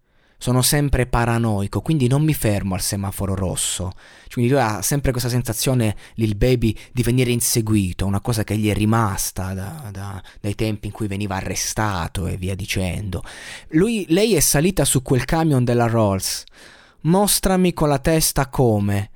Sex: male